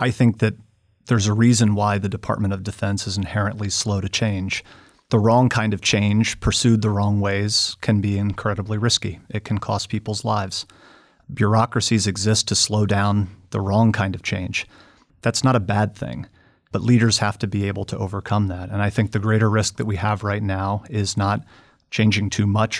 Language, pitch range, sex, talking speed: English, 100-110 Hz, male, 195 wpm